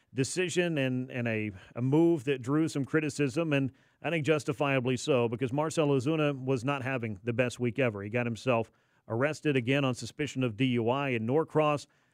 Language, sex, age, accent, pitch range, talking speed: English, male, 40-59, American, 125-145 Hz, 180 wpm